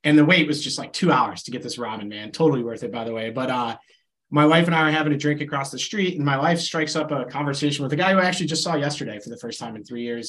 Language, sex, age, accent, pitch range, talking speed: English, male, 30-49, American, 125-160 Hz, 320 wpm